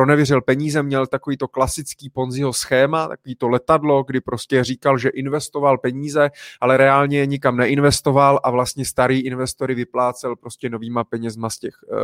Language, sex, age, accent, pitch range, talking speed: Czech, male, 20-39, native, 130-160 Hz, 150 wpm